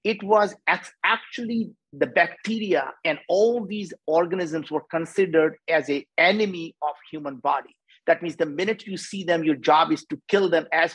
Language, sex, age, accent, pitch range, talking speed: English, male, 50-69, Indian, 160-210 Hz, 170 wpm